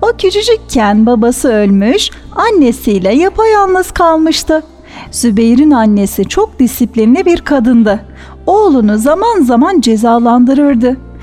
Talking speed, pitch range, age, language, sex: 90 wpm, 220-330 Hz, 40-59, Turkish, female